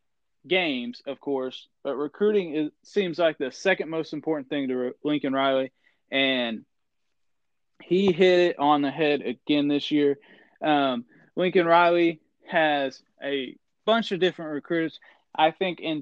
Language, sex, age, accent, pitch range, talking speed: English, male, 20-39, American, 140-180 Hz, 145 wpm